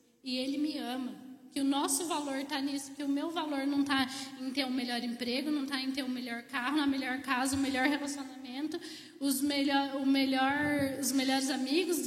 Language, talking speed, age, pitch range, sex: Portuguese, 225 wpm, 10-29, 255-295 Hz, female